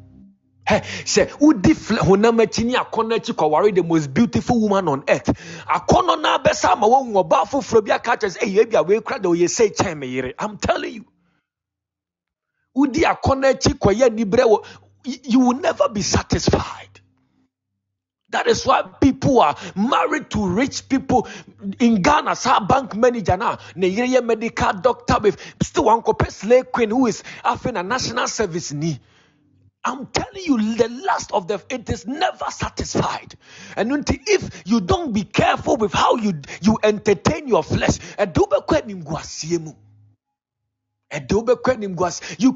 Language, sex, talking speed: English, male, 140 wpm